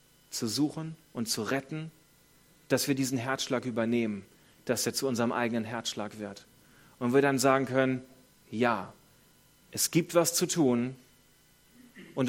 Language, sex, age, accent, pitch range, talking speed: German, male, 30-49, German, 120-145 Hz, 140 wpm